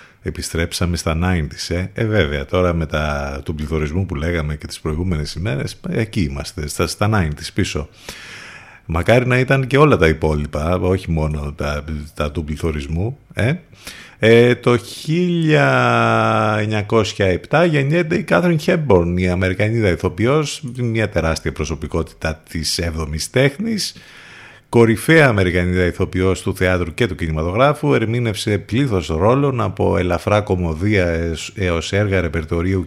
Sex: male